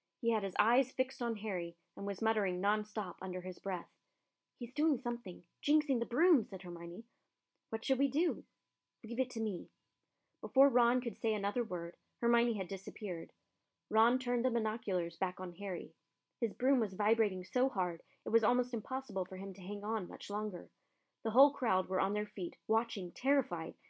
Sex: female